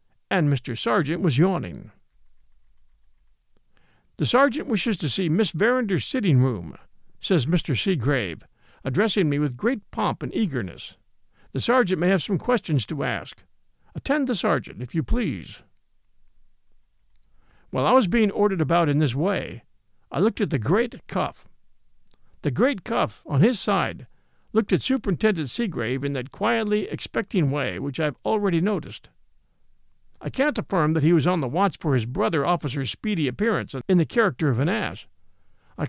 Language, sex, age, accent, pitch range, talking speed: English, male, 50-69, American, 135-210 Hz, 155 wpm